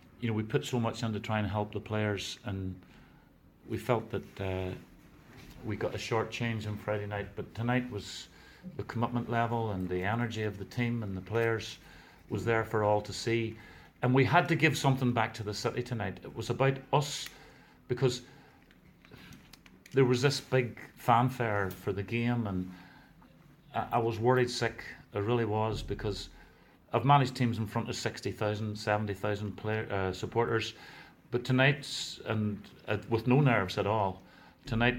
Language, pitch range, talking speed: English, 105-120 Hz, 175 wpm